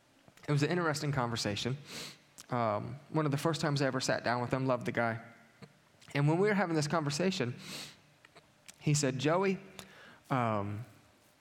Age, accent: 30-49, American